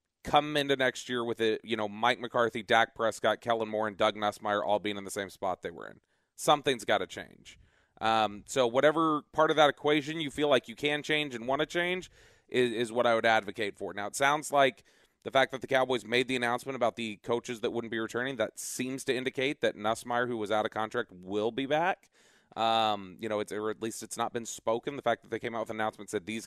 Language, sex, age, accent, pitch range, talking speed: English, male, 30-49, American, 105-130 Hz, 245 wpm